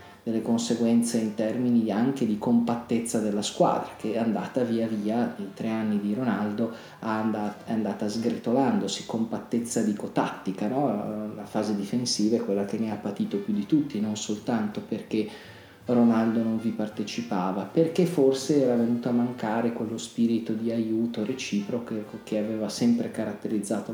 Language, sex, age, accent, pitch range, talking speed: Italian, male, 30-49, native, 105-120 Hz, 150 wpm